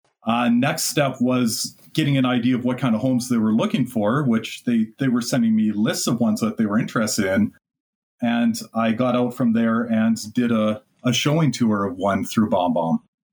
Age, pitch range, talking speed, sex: 30-49, 115-140 Hz, 205 wpm, male